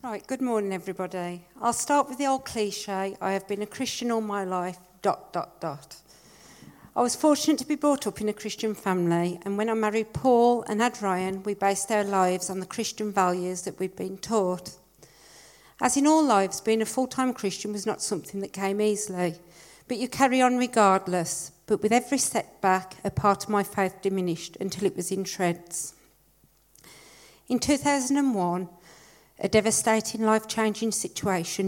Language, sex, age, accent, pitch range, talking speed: English, female, 50-69, British, 185-225 Hz, 175 wpm